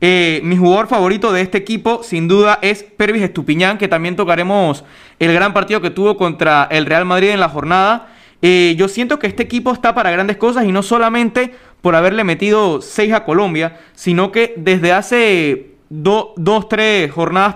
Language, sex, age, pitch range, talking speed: Spanish, male, 20-39, 160-205 Hz, 180 wpm